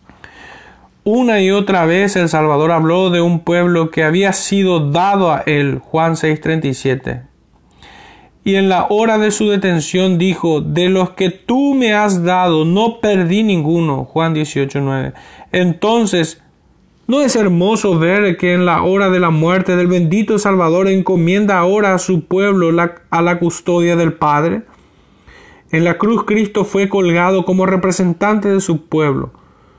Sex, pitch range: male, 165-200 Hz